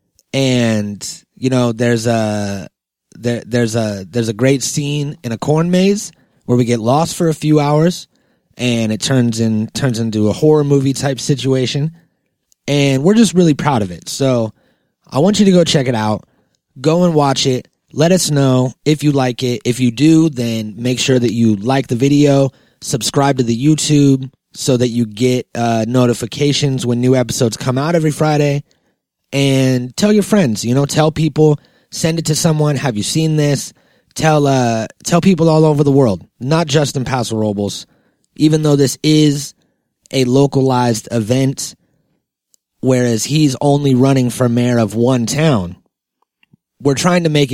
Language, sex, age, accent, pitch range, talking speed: English, male, 30-49, American, 120-150 Hz, 175 wpm